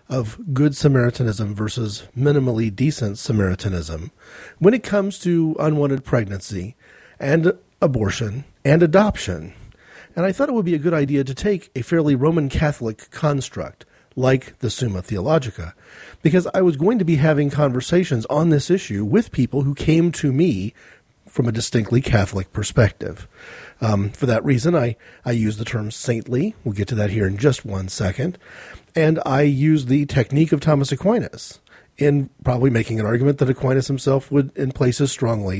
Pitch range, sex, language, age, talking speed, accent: 115-155 Hz, male, English, 40-59, 165 wpm, American